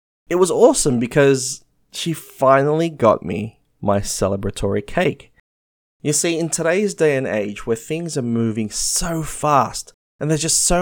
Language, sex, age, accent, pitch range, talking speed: English, male, 20-39, Australian, 120-175 Hz, 155 wpm